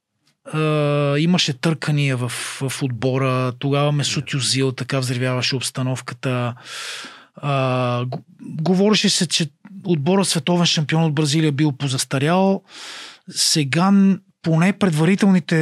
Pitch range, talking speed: 145-195 Hz, 95 wpm